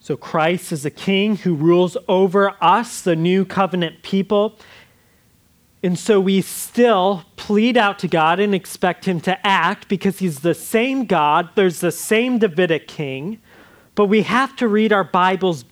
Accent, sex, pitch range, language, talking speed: American, male, 175-220 Hz, English, 165 wpm